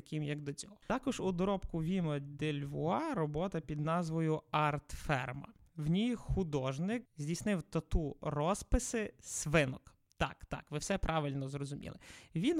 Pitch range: 145-185 Hz